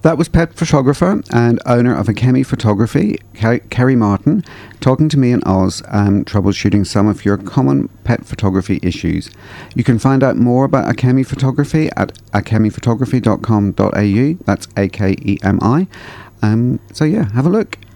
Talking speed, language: 140 wpm, English